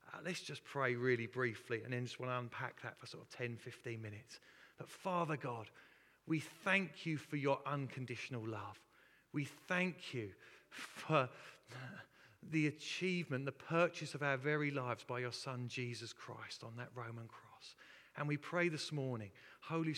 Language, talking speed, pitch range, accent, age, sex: English, 160 wpm, 125-155 Hz, British, 40-59, male